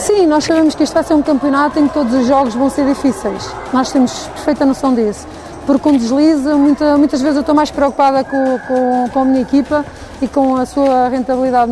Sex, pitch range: female, 255-295 Hz